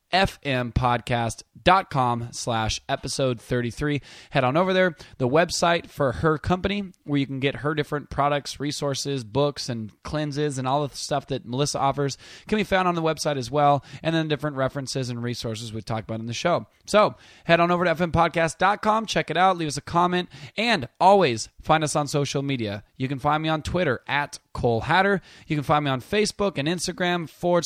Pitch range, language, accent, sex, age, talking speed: 130-165 Hz, English, American, male, 20-39, 195 wpm